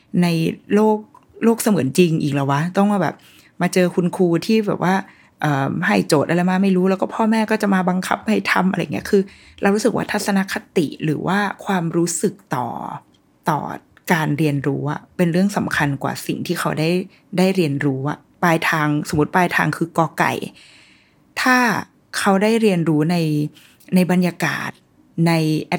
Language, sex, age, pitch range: Thai, female, 20-39, 170-215 Hz